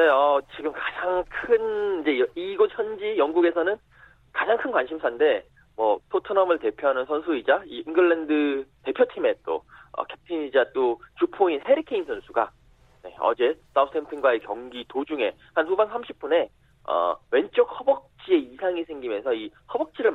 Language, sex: Korean, male